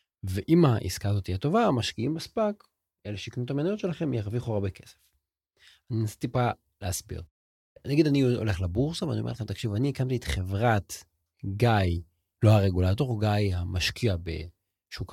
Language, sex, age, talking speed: Hebrew, male, 40-59, 145 wpm